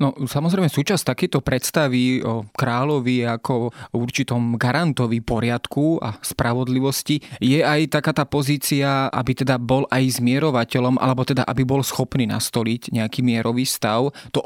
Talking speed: 140 wpm